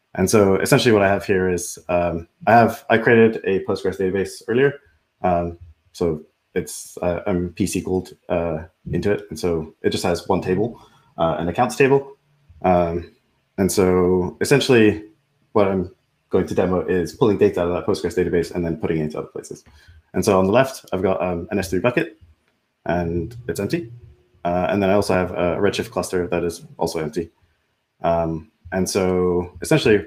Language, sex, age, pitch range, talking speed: English, male, 20-39, 85-105 Hz, 185 wpm